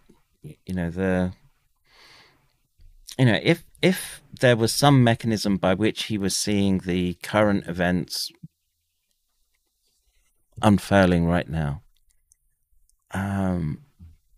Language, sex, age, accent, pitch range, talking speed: English, male, 30-49, British, 80-100 Hz, 95 wpm